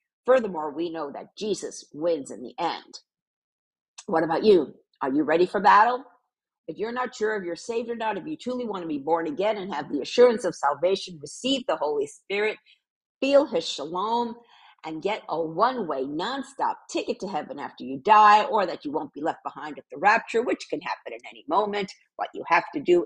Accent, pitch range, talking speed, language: American, 170-250 Hz, 205 wpm, English